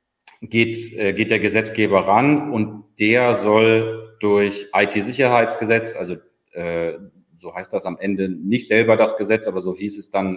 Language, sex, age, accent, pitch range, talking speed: German, male, 30-49, German, 105-130 Hz, 150 wpm